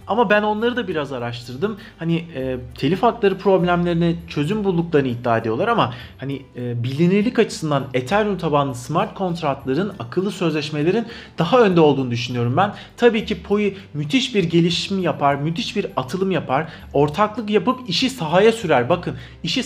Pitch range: 160-215 Hz